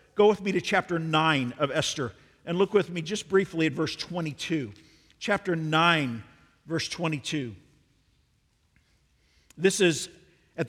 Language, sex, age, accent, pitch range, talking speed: English, male, 50-69, American, 160-200 Hz, 135 wpm